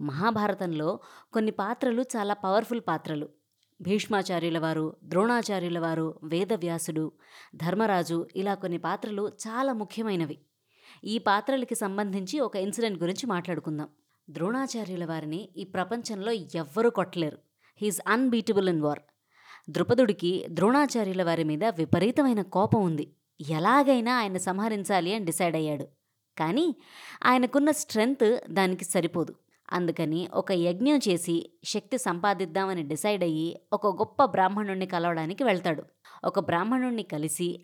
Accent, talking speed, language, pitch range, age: native, 110 wpm, Telugu, 170-225 Hz, 20-39